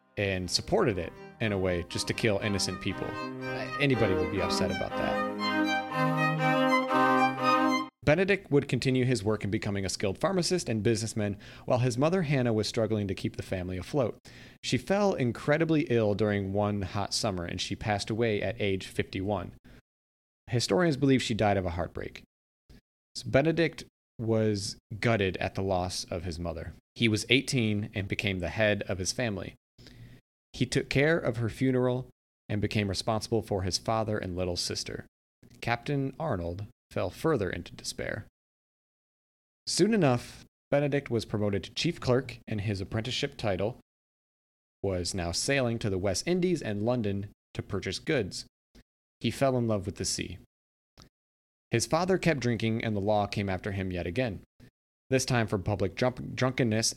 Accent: American